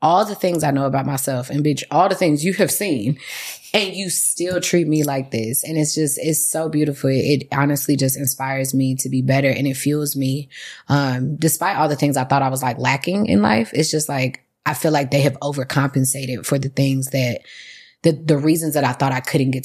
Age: 20-39